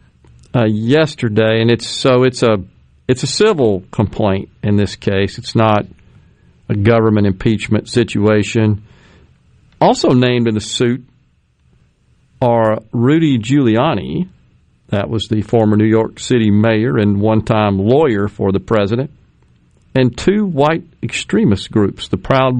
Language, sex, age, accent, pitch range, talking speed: English, male, 50-69, American, 110-140 Hz, 130 wpm